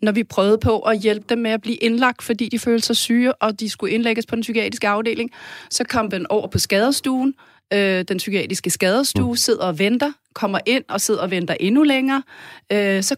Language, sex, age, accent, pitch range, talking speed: Danish, female, 30-49, native, 190-235 Hz, 205 wpm